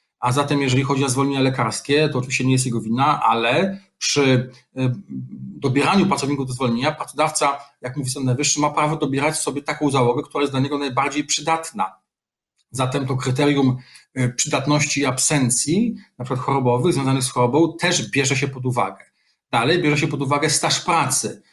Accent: native